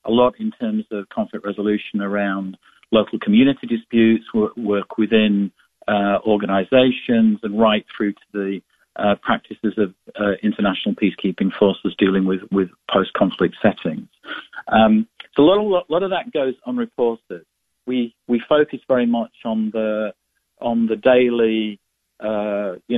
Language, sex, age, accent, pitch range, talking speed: English, male, 50-69, British, 105-135 Hz, 140 wpm